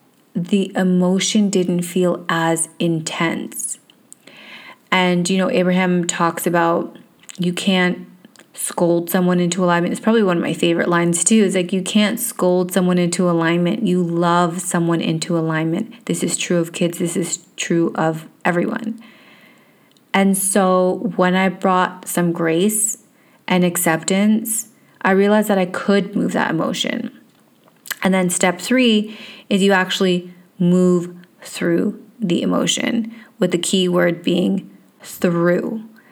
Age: 30-49